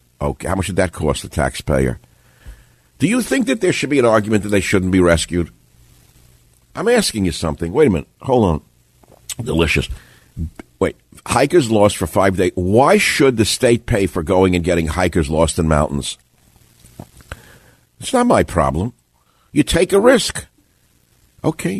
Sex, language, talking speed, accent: male, English, 165 wpm, American